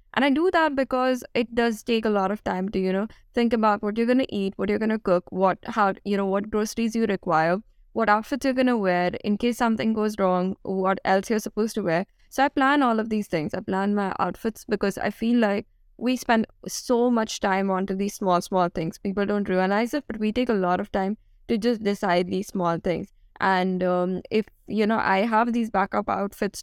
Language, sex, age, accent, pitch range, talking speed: English, female, 20-39, Indian, 185-225 Hz, 235 wpm